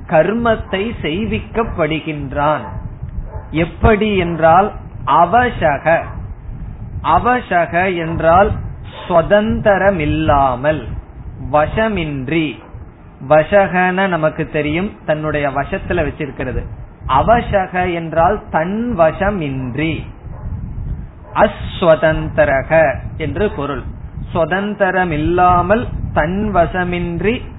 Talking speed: 35 wpm